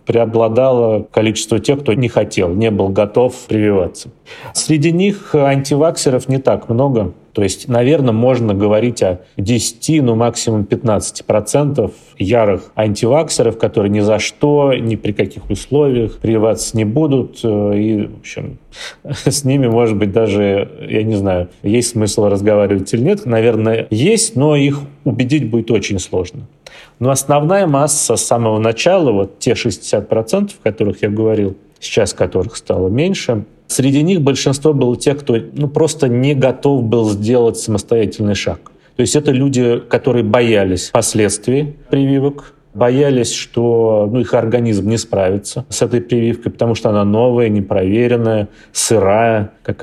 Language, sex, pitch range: Russian, male, 105-130 Hz